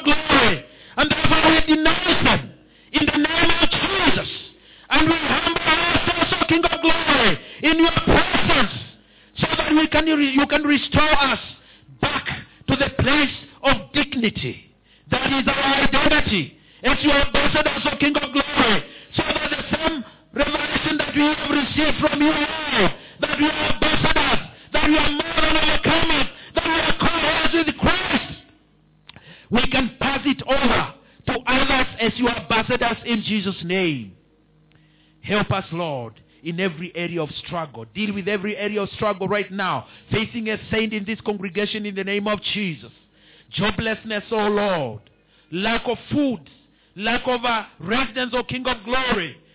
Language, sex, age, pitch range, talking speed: English, male, 50-69, 205-300 Hz, 160 wpm